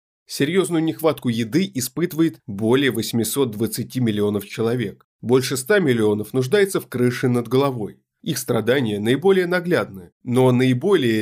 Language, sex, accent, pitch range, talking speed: Russian, male, native, 115-160 Hz, 120 wpm